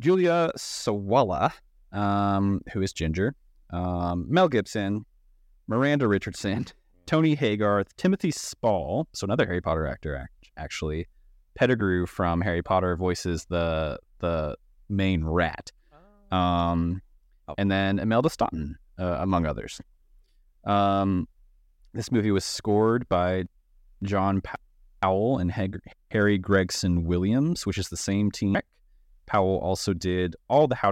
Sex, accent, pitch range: male, American, 85-110 Hz